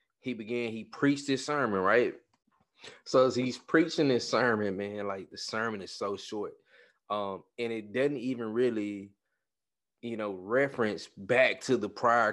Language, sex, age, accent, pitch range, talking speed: English, male, 20-39, American, 100-120 Hz, 160 wpm